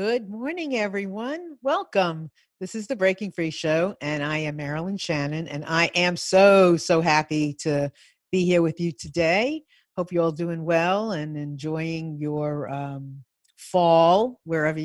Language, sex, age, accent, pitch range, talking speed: English, female, 50-69, American, 150-190 Hz, 155 wpm